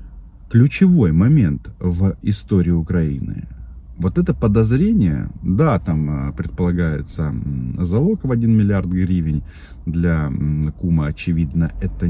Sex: male